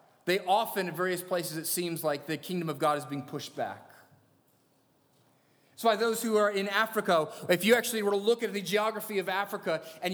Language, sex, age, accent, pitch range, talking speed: English, male, 30-49, American, 155-205 Hz, 205 wpm